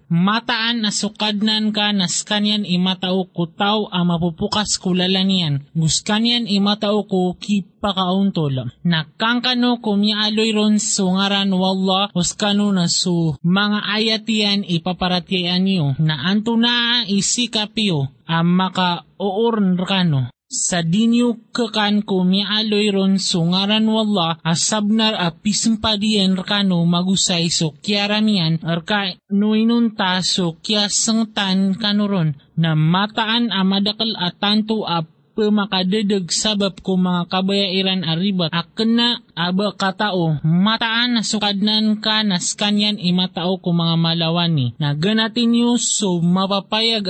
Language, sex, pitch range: Filipino, male, 180-215 Hz